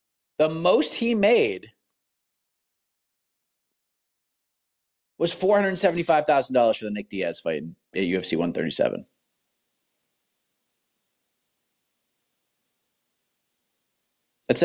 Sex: male